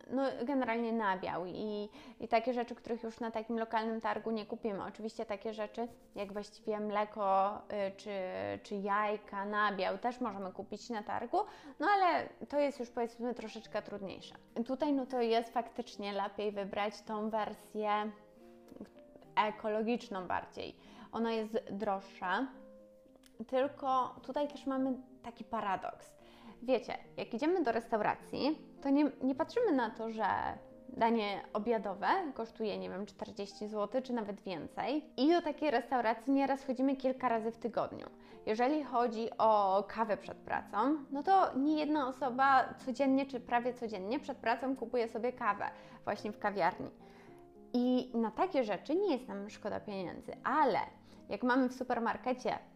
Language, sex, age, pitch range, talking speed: Polish, female, 20-39, 210-260 Hz, 145 wpm